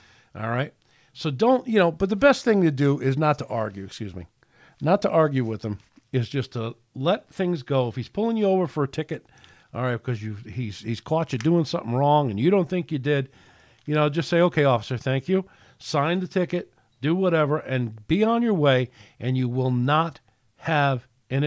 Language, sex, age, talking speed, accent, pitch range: English, male, 50-69, 220 wpm, American, 115-150 Hz